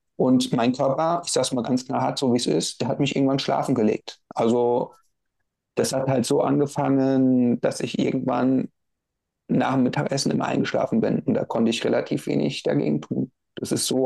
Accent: German